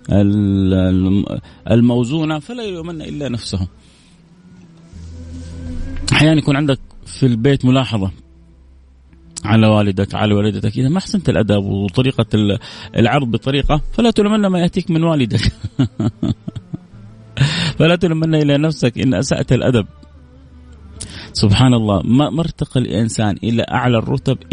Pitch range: 95-130 Hz